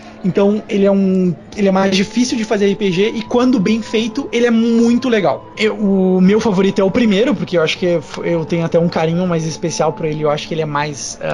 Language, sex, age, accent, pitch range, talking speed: English, male, 20-39, Brazilian, 160-200 Hz, 240 wpm